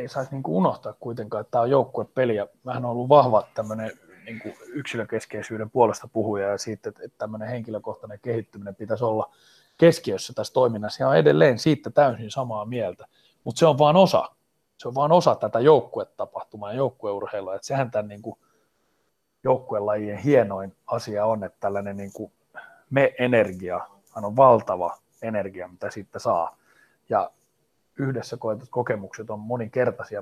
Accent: native